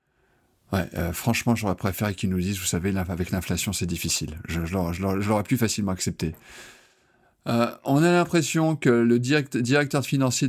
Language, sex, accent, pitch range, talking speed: French, male, French, 100-130 Hz, 190 wpm